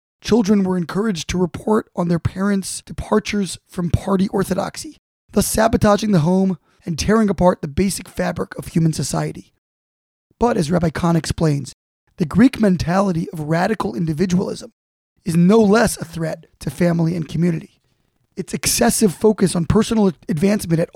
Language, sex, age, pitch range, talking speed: English, male, 20-39, 170-215 Hz, 150 wpm